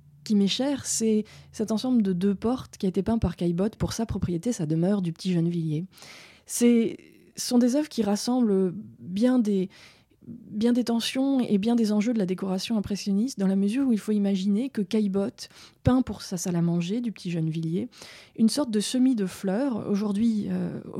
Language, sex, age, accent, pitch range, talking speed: French, female, 20-39, French, 190-230 Hz, 195 wpm